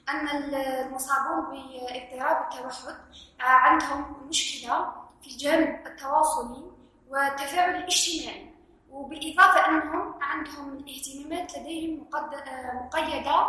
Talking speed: 75 wpm